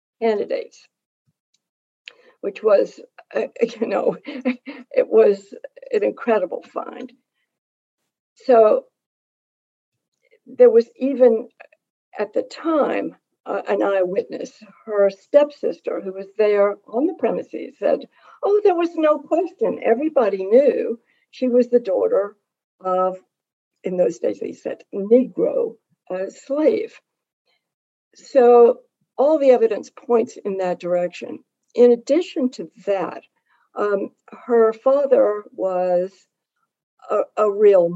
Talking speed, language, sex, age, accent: 110 wpm, English, female, 60-79, American